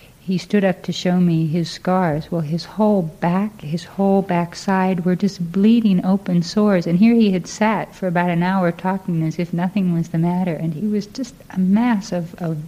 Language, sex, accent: English, female, American